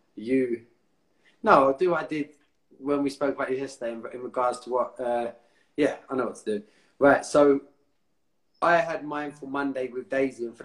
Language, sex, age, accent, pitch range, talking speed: English, male, 20-39, British, 125-155 Hz, 205 wpm